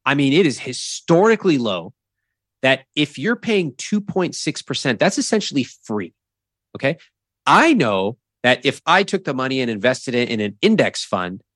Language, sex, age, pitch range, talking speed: English, male, 30-49, 105-155 Hz, 155 wpm